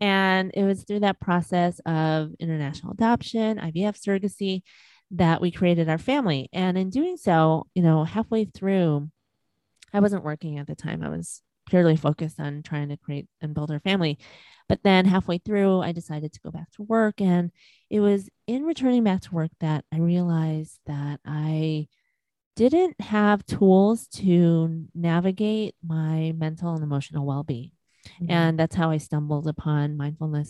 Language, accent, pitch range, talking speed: English, American, 155-195 Hz, 165 wpm